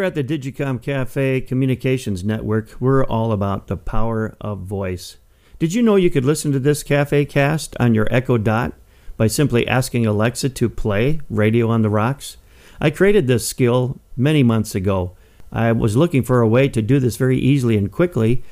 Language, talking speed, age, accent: English, 185 wpm, 50-69, American